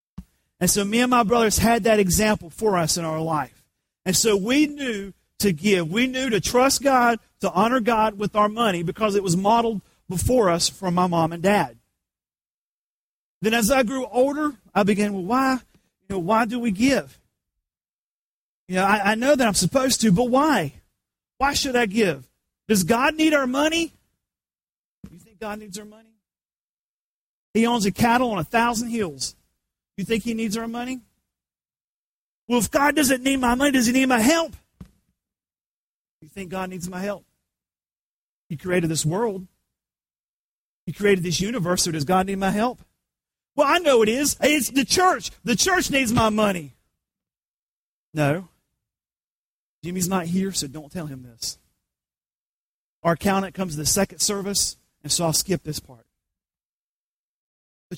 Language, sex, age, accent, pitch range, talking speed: English, male, 40-59, American, 160-235 Hz, 170 wpm